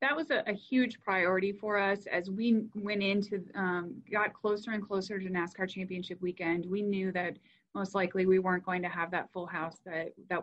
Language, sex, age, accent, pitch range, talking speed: English, female, 30-49, American, 175-200 Hz, 205 wpm